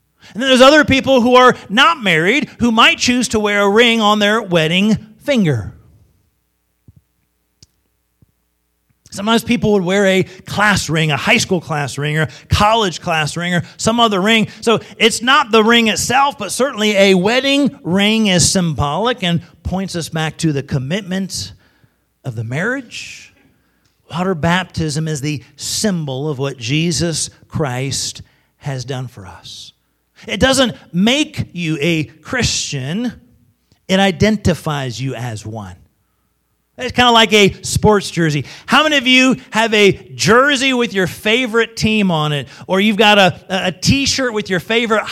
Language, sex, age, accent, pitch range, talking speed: English, male, 50-69, American, 150-225 Hz, 155 wpm